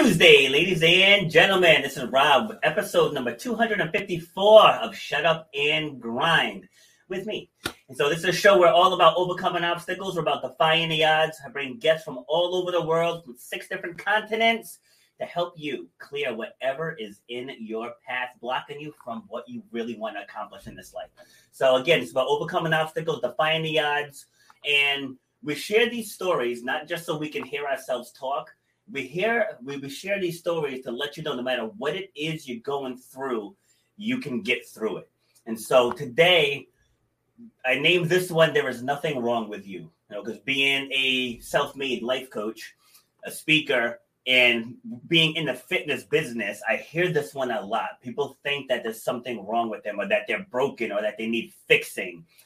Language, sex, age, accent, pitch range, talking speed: English, male, 30-49, American, 130-185 Hz, 190 wpm